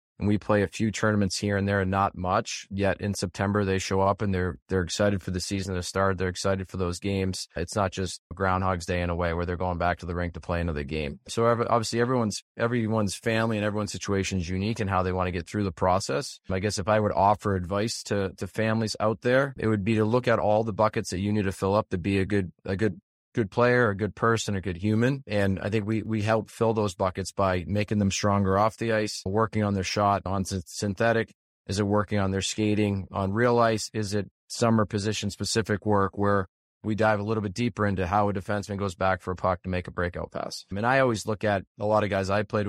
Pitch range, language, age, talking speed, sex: 95-110 Hz, English, 20-39, 255 wpm, male